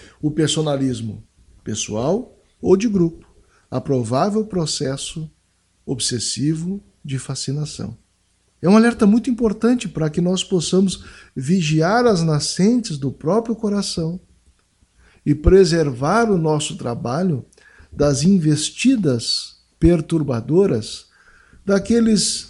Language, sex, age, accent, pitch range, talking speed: Portuguese, male, 60-79, Brazilian, 130-190 Hz, 95 wpm